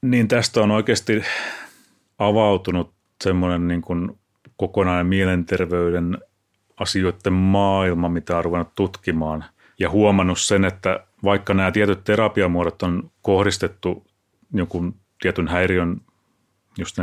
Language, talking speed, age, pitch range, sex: Finnish, 100 wpm, 30-49, 90-110 Hz, male